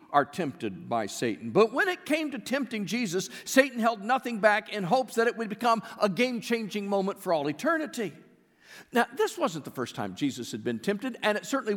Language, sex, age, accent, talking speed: English, male, 50-69, American, 205 wpm